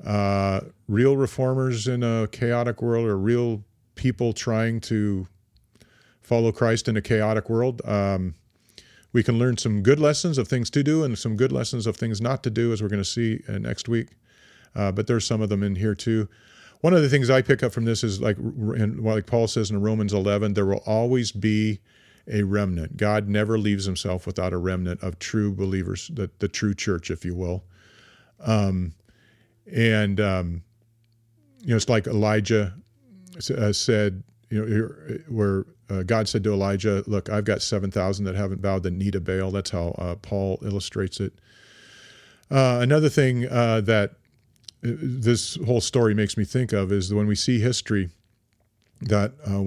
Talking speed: 185 wpm